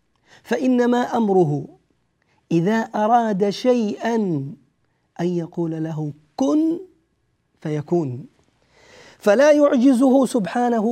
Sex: male